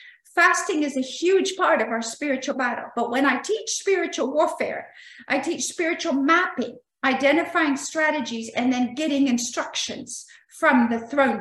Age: 50-69